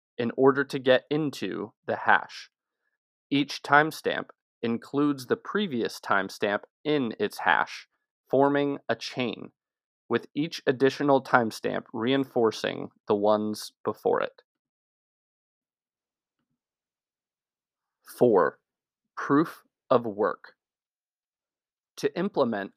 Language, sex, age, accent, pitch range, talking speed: English, male, 30-49, American, 115-145 Hz, 90 wpm